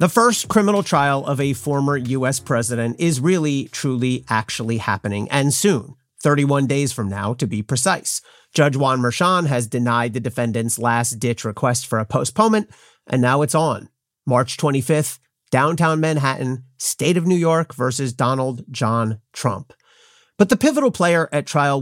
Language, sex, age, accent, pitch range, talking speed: English, male, 40-59, American, 125-175 Hz, 155 wpm